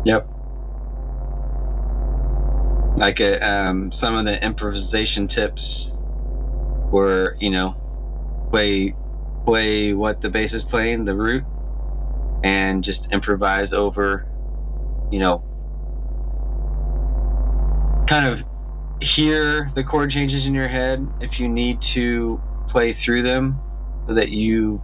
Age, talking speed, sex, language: 30-49, 110 wpm, male, English